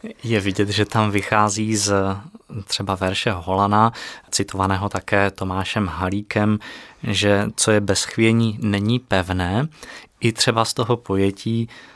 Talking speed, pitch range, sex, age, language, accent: 125 wpm, 100-115 Hz, male, 20-39, Czech, native